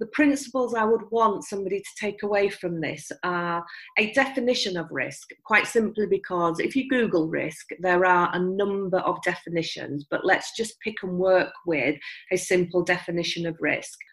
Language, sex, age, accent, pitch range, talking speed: English, female, 40-59, British, 170-210 Hz, 175 wpm